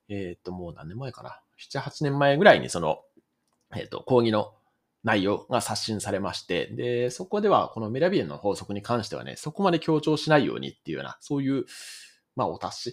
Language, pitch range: Japanese, 100-160 Hz